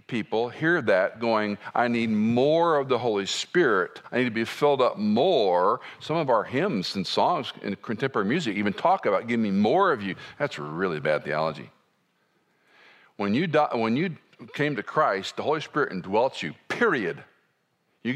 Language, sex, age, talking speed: English, male, 50-69, 170 wpm